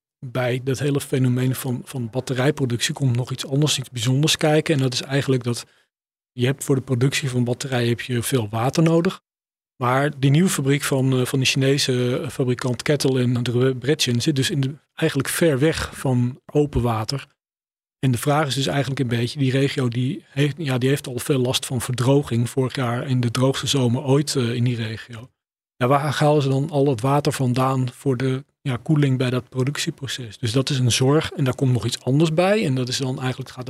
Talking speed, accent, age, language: 210 wpm, Dutch, 40-59, Dutch